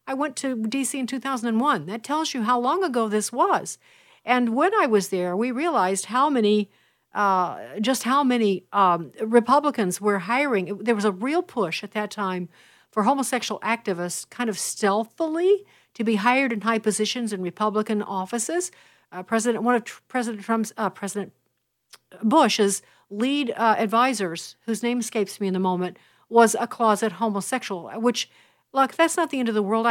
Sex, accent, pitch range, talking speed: female, American, 200-250 Hz, 175 wpm